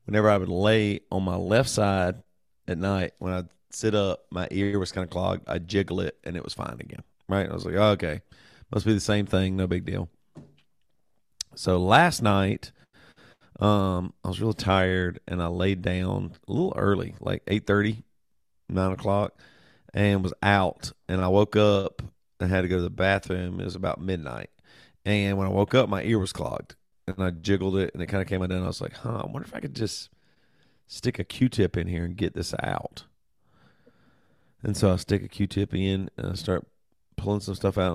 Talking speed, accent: 205 wpm, American